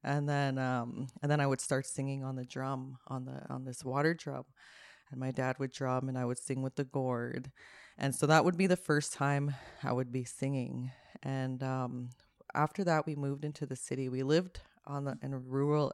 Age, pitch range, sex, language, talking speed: 20-39, 130-145 Hz, female, English, 220 wpm